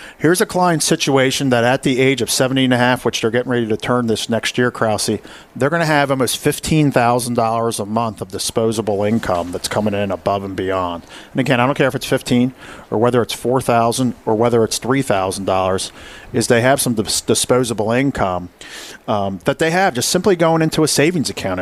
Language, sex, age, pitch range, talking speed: English, male, 40-59, 110-135 Hz, 200 wpm